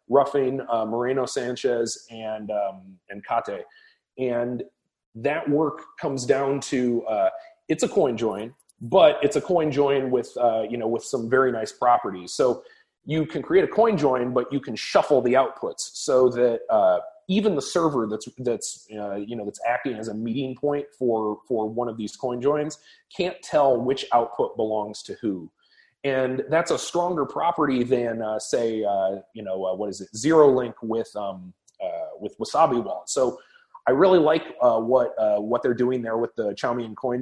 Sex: male